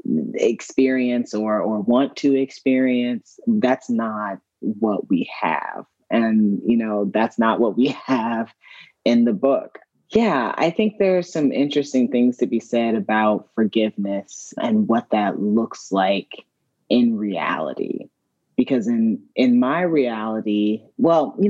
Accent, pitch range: American, 110-125 Hz